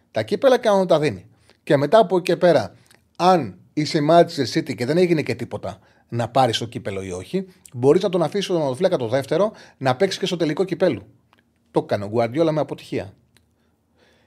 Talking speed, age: 195 wpm, 30-49